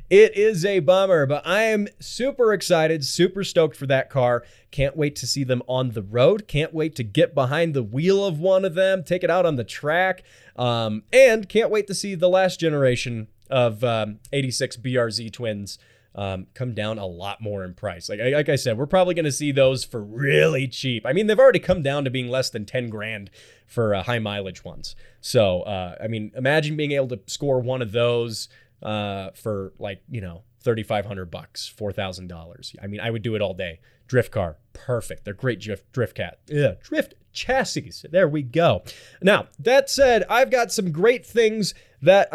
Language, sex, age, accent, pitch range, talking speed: English, male, 20-39, American, 115-185 Hz, 200 wpm